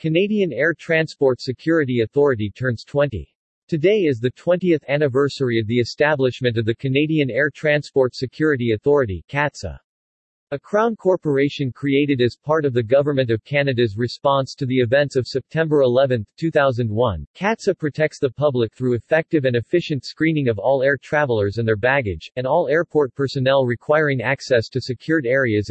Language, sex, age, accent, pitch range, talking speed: English, male, 40-59, American, 120-150 Hz, 155 wpm